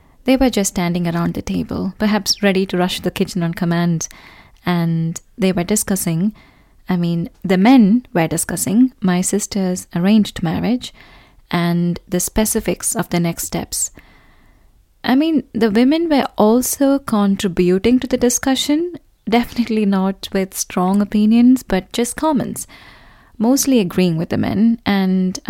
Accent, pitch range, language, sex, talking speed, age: Indian, 175-225 Hz, English, female, 140 wpm, 20-39